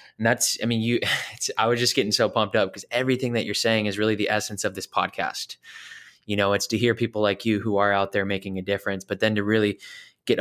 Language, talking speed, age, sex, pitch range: English, 255 wpm, 20-39, male, 100-110 Hz